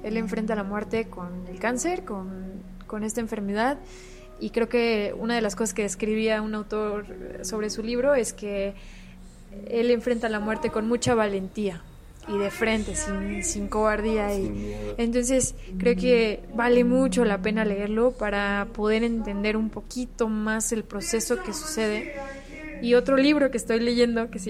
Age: 20-39